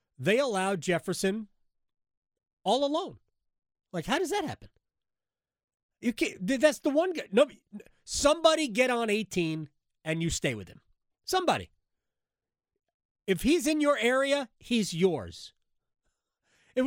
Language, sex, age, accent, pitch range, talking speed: English, male, 30-49, American, 155-255 Hz, 120 wpm